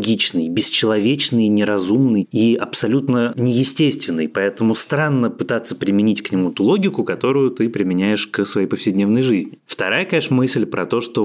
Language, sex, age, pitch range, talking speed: Russian, male, 20-39, 100-135 Hz, 140 wpm